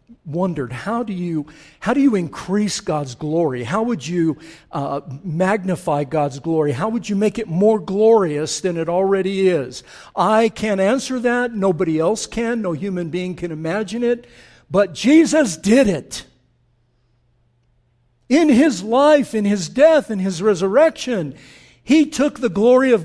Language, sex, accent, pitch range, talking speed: English, male, American, 140-225 Hz, 155 wpm